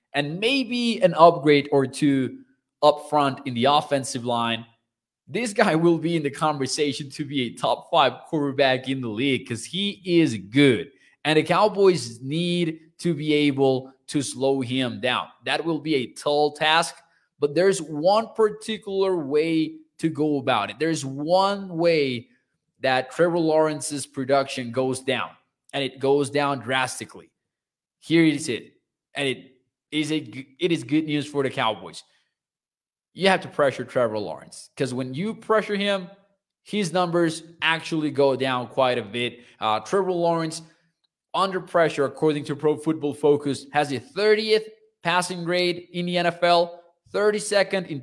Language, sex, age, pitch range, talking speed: English, male, 20-39, 135-175 Hz, 155 wpm